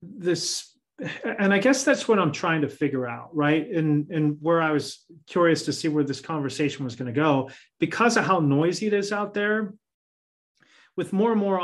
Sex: male